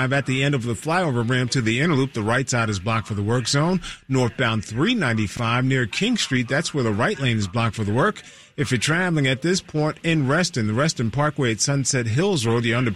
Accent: American